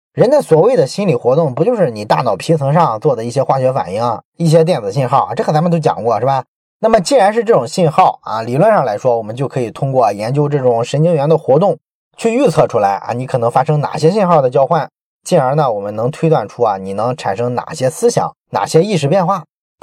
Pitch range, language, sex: 130-175 Hz, Chinese, male